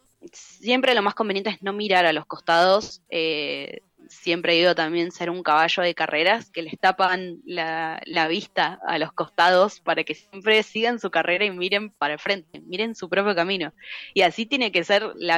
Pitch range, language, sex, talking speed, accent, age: 170-205 Hz, Spanish, female, 195 wpm, Argentinian, 20-39